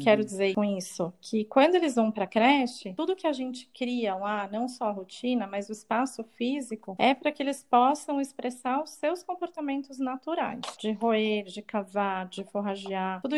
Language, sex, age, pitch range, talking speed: Portuguese, female, 30-49, 210-265 Hz, 185 wpm